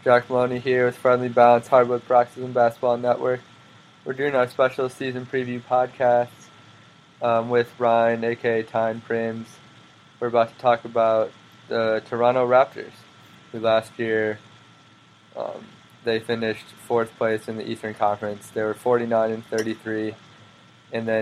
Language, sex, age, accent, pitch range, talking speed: English, male, 20-39, American, 110-120 Hz, 140 wpm